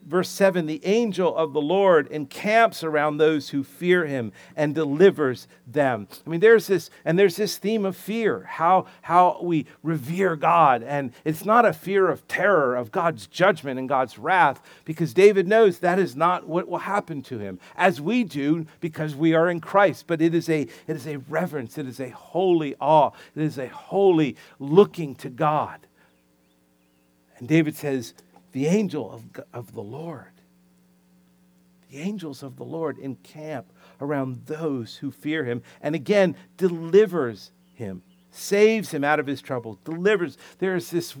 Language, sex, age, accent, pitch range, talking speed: English, male, 50-69, American, 130-185 Hz, 170 wpm